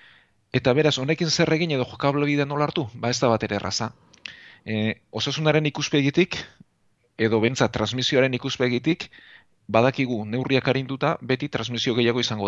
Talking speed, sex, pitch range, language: 125 wpm, male, 110-125 Hz, Spanish